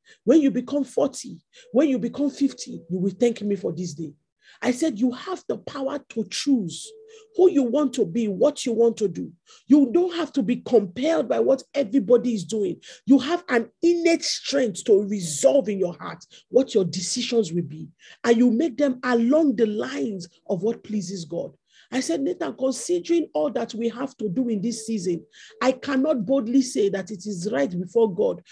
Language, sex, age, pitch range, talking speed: English, male, 50-69, 210-295 Hz, 195 wpm